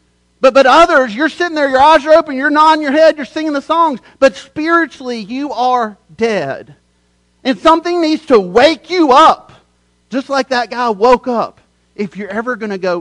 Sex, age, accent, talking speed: male, 40-59, American, 195 wpm